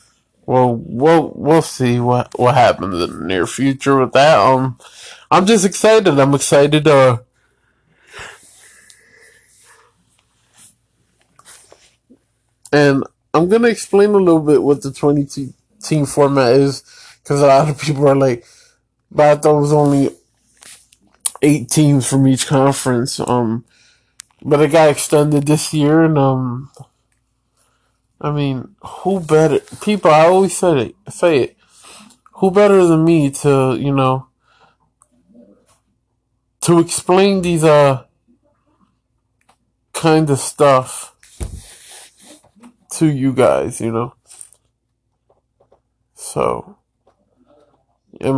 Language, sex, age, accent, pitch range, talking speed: English, male, 20-39, American, 125-155 Hz, 110 wpm